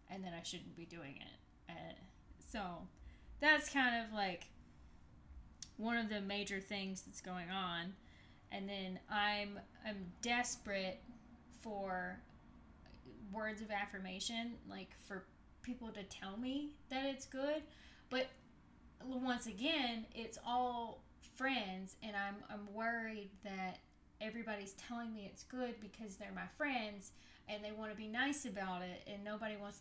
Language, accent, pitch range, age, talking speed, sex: English, American, 195-250 Hz, 10-29, 140 wpm, female